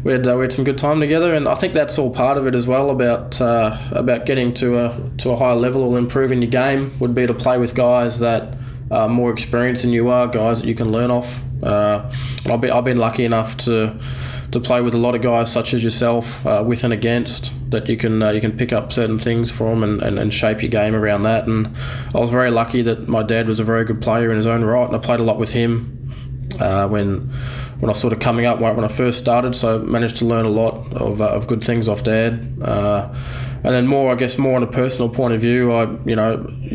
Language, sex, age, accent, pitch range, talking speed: English, male, 20-39, Australian, 115-125 Hz, 260 wpm